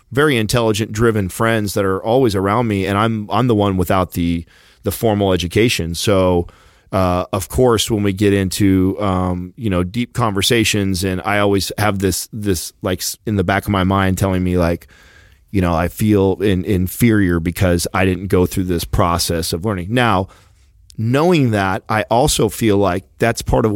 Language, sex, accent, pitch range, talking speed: English, male, American, 90-110 Hz, 185 wpm